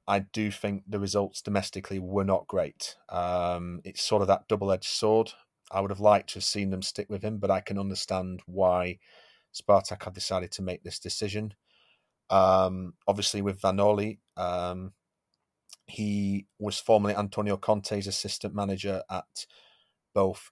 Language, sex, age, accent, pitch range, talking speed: English, male, 30-49, British, 95-105 Hz, 155 wpm